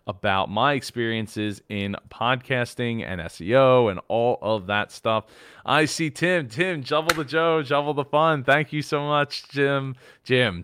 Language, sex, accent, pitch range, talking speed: English, male, American, 105-150 Hz, 160 wpm